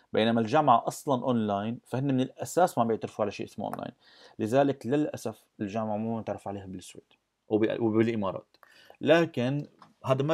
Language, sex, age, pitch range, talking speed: Arabic, male, 30-49, 105-130 Hz, 140 wpm